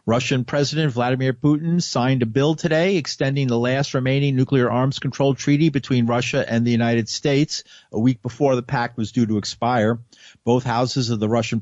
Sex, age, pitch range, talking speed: male, 50-69, 115-145 Hz, 185 wpm